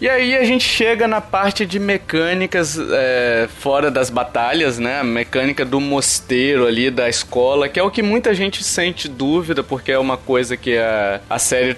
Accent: Brazilian